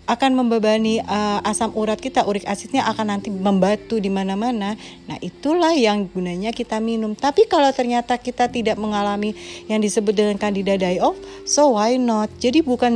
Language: Indonesian